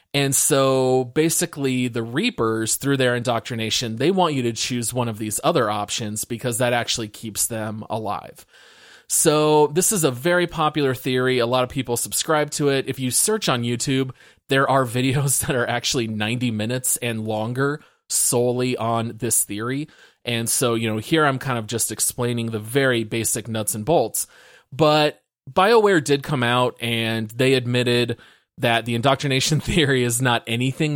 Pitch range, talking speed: 115-140 Hz, 170 wpm